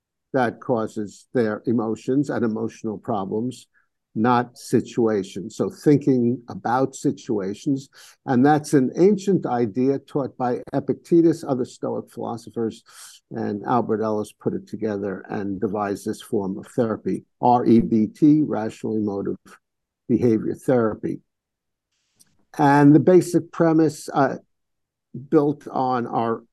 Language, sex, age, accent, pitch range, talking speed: English, male, 50-69, American, 115-140 Hz, 110 wpm